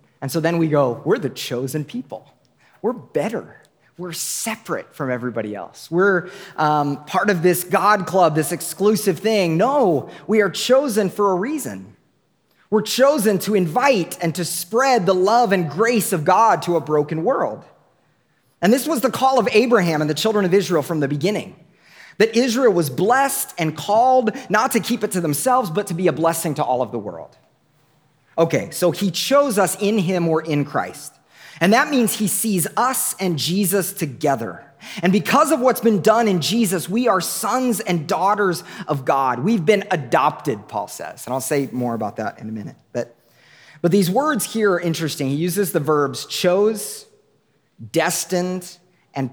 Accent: American